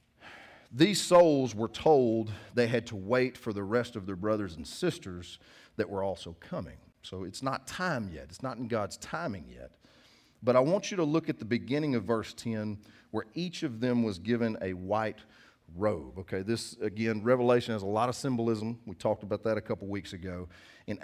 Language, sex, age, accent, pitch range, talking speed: English, male, 40-59, American, 100-120 Hz, 200 wpm